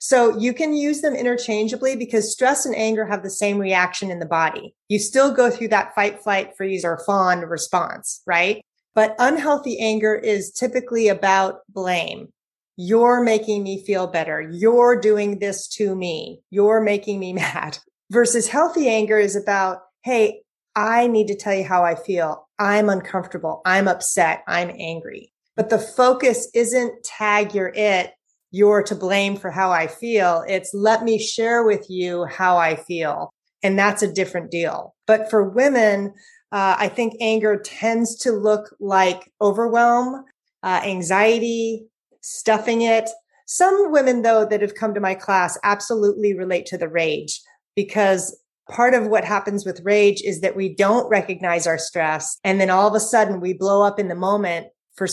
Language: English